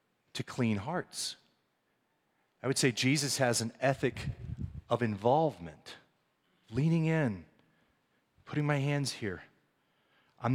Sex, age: male, 40-59